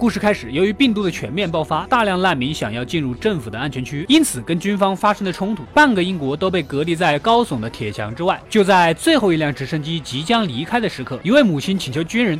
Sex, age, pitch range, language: male, 20-39, 155-225 Hz, Chinese